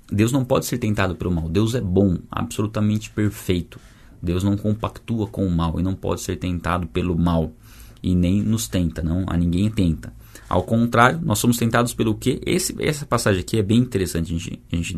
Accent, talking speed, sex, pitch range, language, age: Brazilian, 190 wpm, male, 90-110 Hz, Portuguese, 20-39